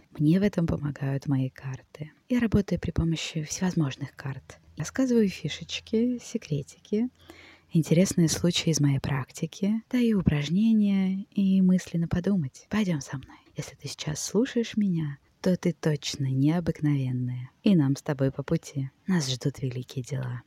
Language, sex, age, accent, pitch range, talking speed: Russian, female, 20-39, native, 135-180 Hz, 140 wpm